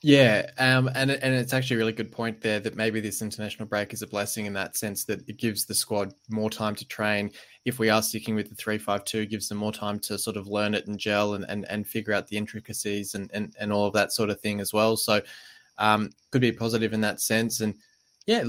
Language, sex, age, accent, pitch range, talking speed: English, male, 20-39, Australian, 105-115 Hz, 255 wpm